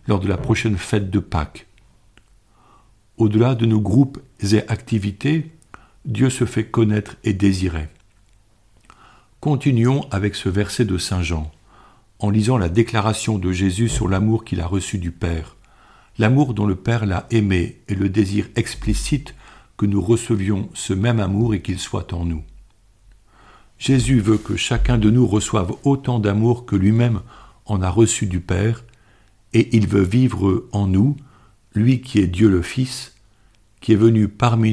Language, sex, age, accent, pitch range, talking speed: French, male, 50-69, French, 100-115 Hz, 160 wpm